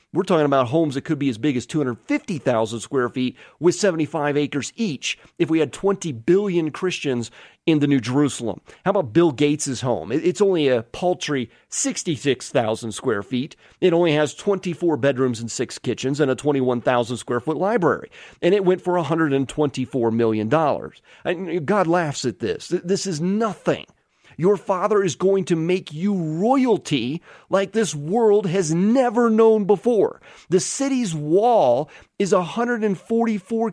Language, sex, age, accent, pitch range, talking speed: English, male, 40-59, American, 135-205 Hz, 155 wpm